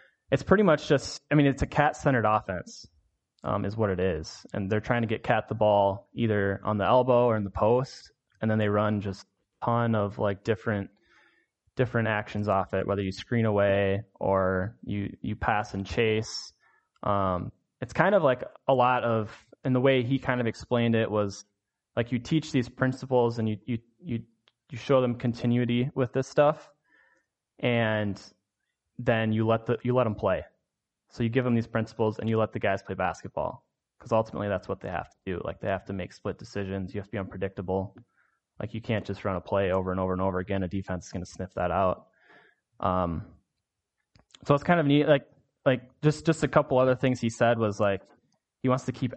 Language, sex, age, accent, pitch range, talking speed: English, male, 20-39, American, 100-125 Hz, 210 wpm